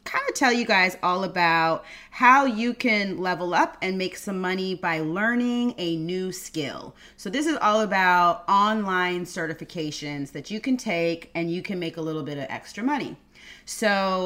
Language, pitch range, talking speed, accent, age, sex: English, 165-220 Hz, 180 wpm, American, 30-49, female